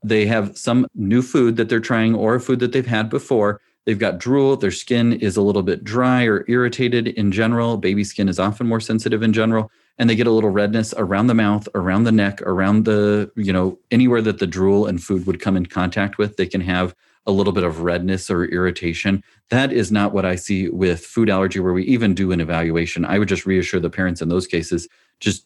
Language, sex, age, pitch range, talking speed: English, male, 30-49, 90-110 Hz, 235 wpm